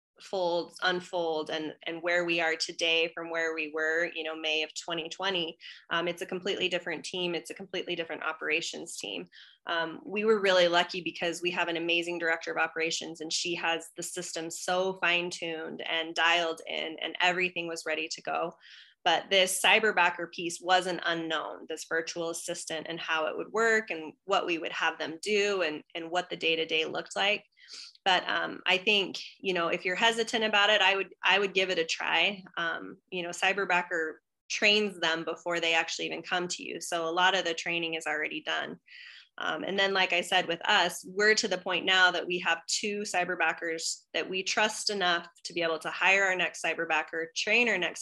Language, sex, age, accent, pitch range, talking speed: English, female, 20-39, American, 165-190 Hz, 200 wpm